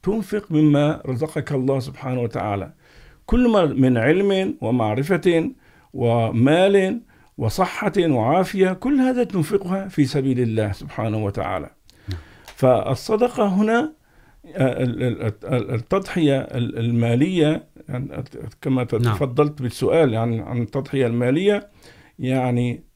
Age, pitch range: 50-69, 125-165 Hz